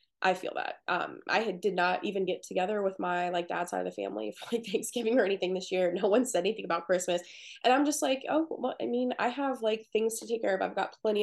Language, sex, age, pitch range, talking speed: English, female, 20-39, 185-235 Hz, 275 wpm